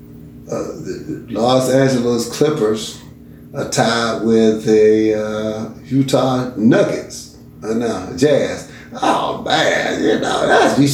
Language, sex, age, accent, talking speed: English, male, 60-79, American, 120 wpm